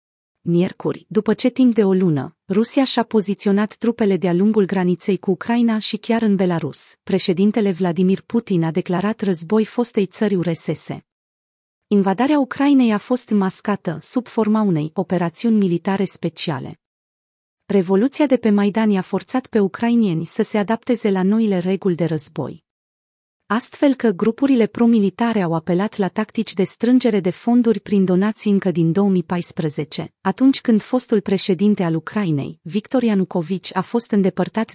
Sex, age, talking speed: female, 30-49, 145 wpm